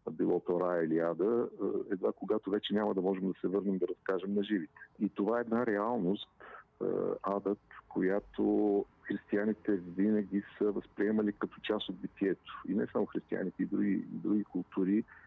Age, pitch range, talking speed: 50-69, 95-105 Hz, 155 wpm